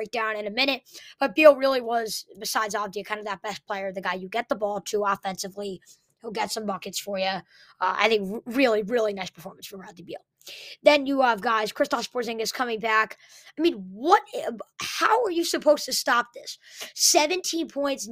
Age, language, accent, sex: 20-39, English, American, female